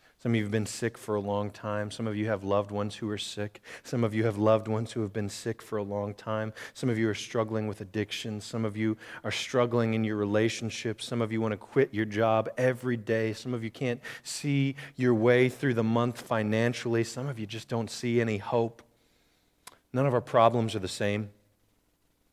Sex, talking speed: male, 225 wpm